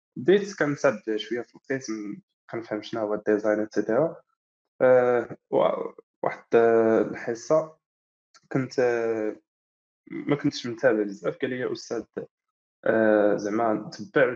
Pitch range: 110-140 Hz